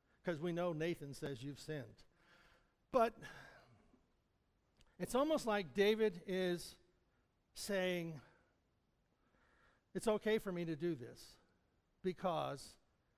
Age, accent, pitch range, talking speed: 60-79, American, 165-220 Hz, 100 wpm